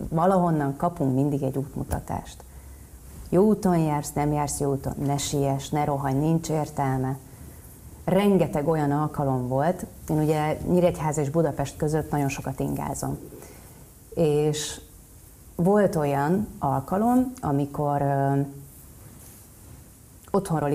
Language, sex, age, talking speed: Hungarian, female, 30-49, 110 wpm